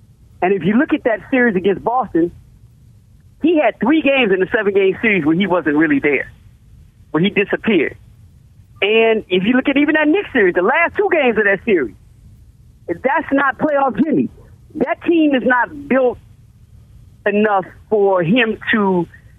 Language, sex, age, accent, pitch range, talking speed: English, male, 40-59, American, 180-255 Hz, 170 wpm